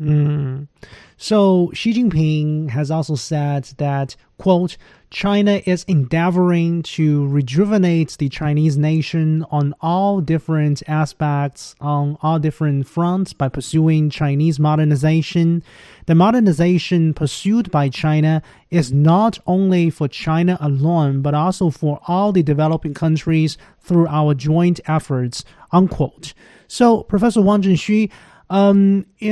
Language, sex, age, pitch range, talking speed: English, male, 30-49, 150-175 Hz, 120 wpm